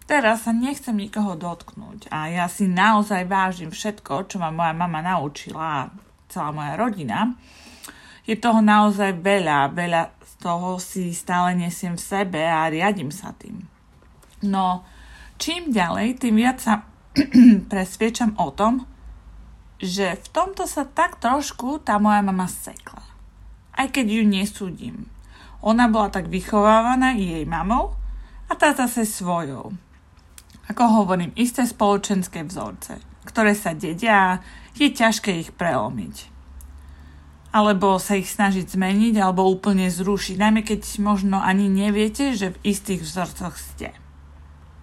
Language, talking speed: Slovak, 135 wpm